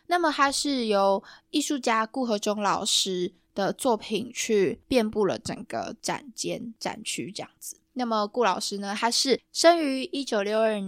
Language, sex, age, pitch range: Chinese, female, 10-29, 200-250 Hz